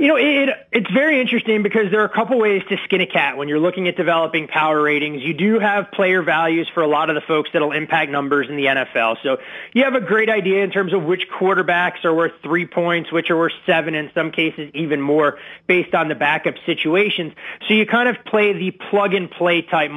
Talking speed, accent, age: 230 wpm, American, 30-49